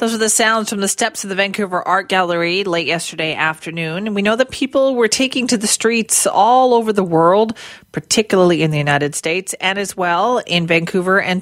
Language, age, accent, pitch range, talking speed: English, 40-59, American, 160-215 Hz, 210 wpm